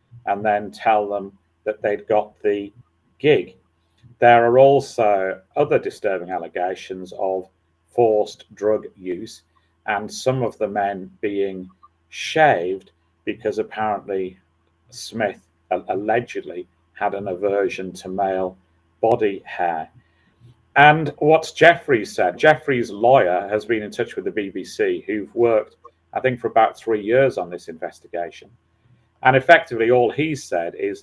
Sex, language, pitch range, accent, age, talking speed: male, English, 95-125 Hz, British, 40-59, 130 wpm